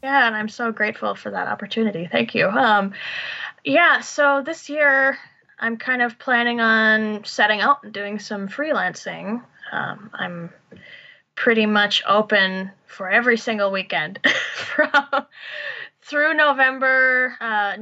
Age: 10-29